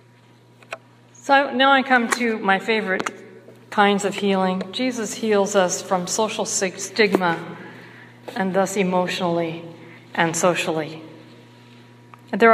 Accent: American